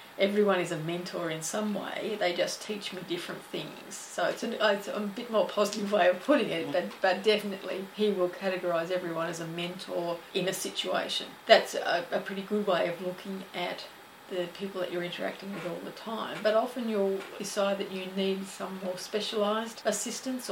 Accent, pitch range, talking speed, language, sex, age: Australian, 180-210 Hz, 195 wpm, English, female, 40-59